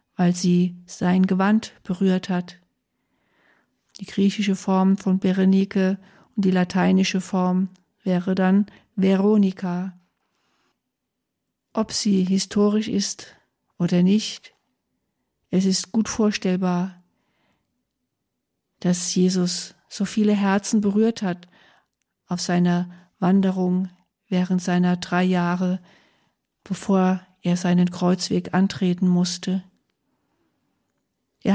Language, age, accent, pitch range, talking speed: German, 50-69, German, 180-200 Hz, 95 wpm